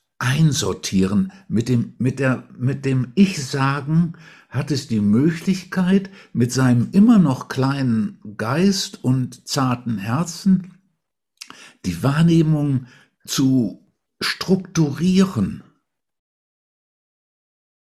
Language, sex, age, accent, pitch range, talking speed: German, male, 60-79, German, 125-185 Hz, 75 wpm